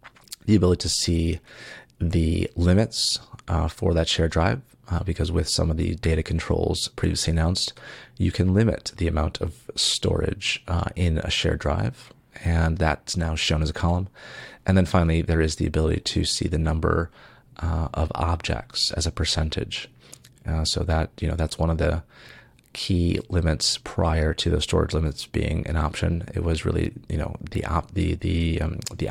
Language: English